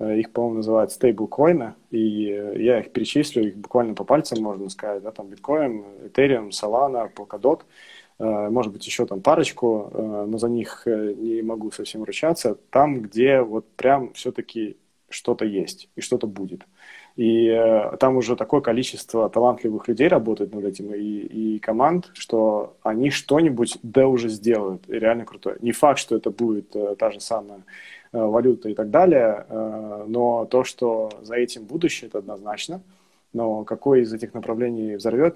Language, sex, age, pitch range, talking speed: Russian, male, 20-39, 105-120 Hz, 155 wpm